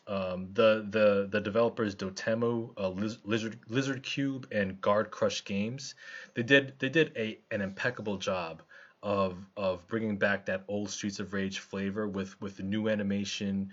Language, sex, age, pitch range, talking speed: English, male, 20-39, 100-120 Hz, 160 wpm